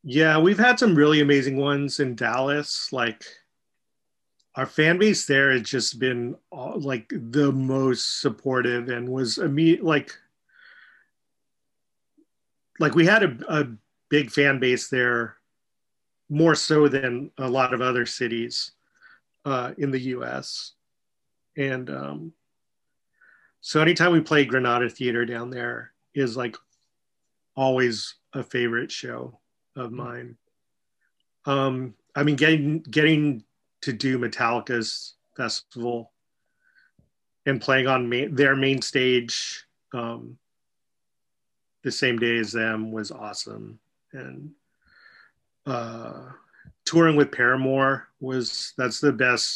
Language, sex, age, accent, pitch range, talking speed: English, male, 40-59, American, 120-145 Hz, 115 wpm